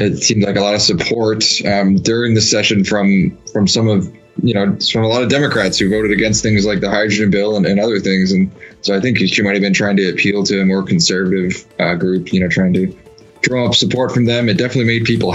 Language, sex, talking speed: English, male, 245 wpm